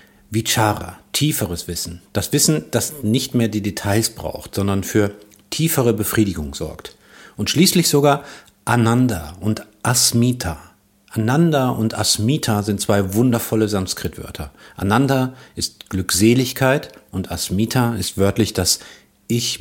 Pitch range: 100-130 Hz